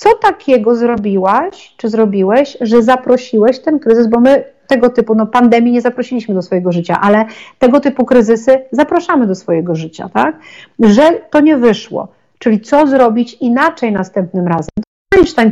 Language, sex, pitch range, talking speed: Polish, female, 215-295 Hz, 155 wpm